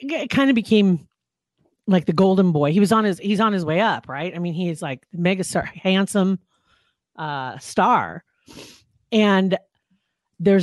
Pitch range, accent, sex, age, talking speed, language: 150-200 Hz, American, female, 40-59, 165 wpm, English